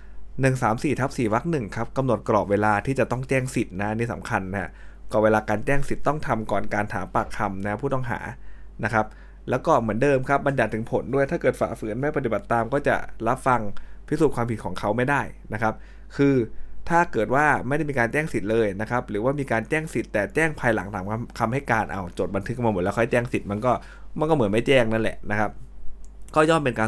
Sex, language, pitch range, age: male, Thai, 95-120 Hz, 20-39